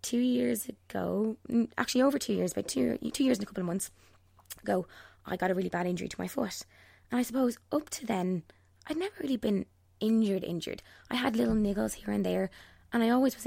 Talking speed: 220 wpm